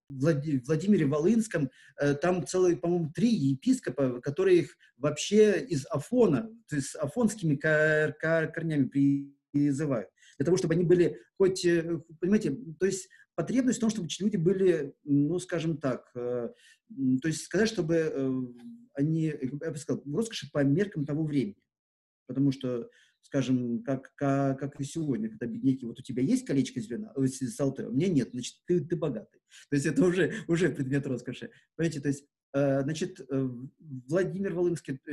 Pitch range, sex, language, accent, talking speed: 135-180 Hz, male, Russian, native, 150 wpm